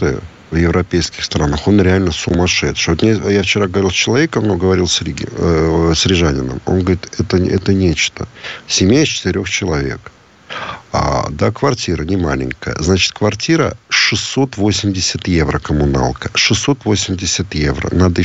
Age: 50-69